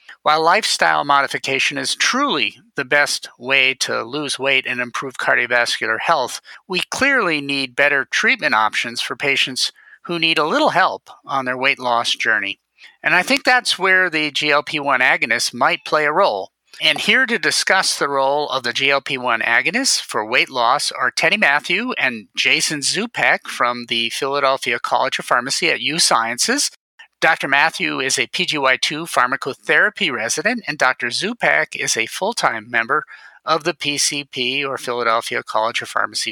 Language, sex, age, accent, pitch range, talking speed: English, male, 50-69, American, 135-175 Hz, 155 wpm